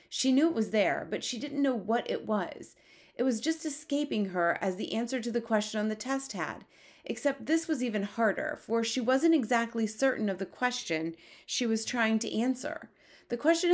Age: 30-49